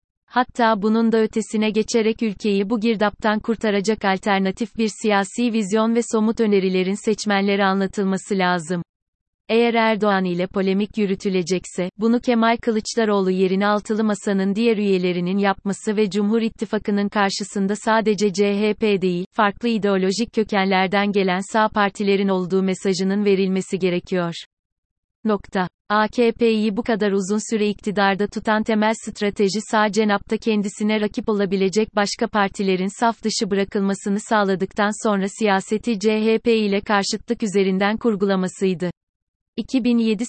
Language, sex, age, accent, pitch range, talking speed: Turkish, female, 30-49, native, 195-220 Hz, 115 wpm